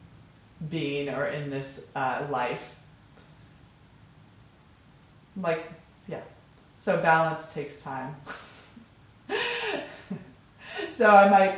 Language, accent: English, American